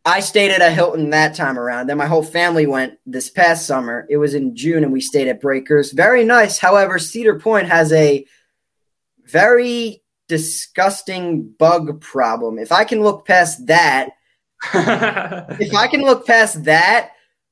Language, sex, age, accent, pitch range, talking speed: English, male, 10-29, American, 145-180 Hz, 165 wpm